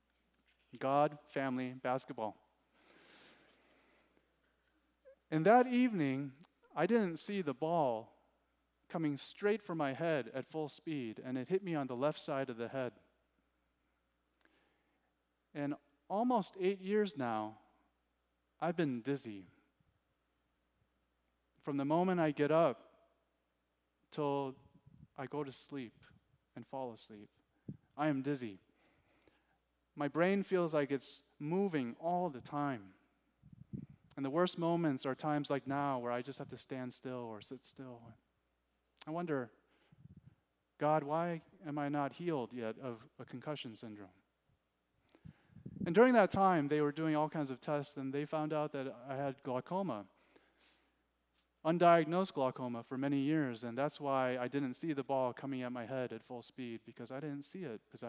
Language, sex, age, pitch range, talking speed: English, male, 30-49, 115-155 Hz, 145 wpm